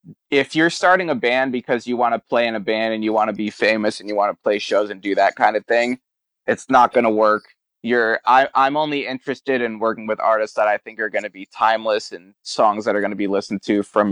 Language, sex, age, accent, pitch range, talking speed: English, male, 20-39, American, 105-125 Hz, 270 wpm